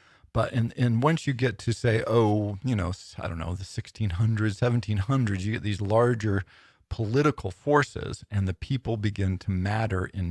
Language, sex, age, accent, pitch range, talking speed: English, male, 40-59, American, 95-110 Hz, 175 wpm